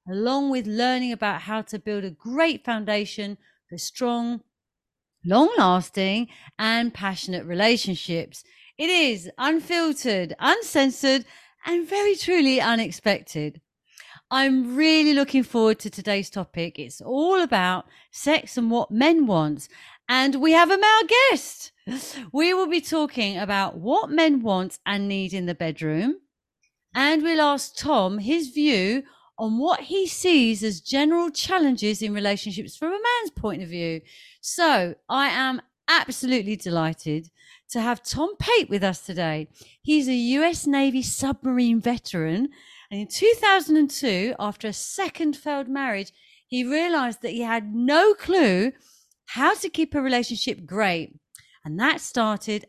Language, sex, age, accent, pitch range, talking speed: English, female, 40-59, British, 200-310 Hz, 140 wpm